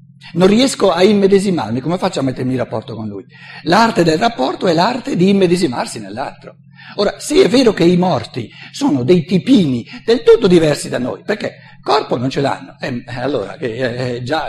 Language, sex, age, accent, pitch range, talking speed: Italian, male, 60-79, native, 135-190 Hz, 180 wpm